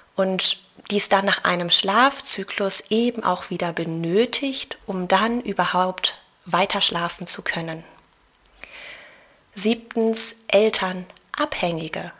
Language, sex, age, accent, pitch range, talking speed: German, female, 20-39, German, 180-225 Hz, 95 wpm